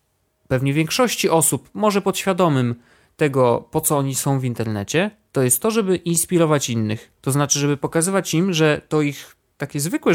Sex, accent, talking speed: male, native, 165 wpm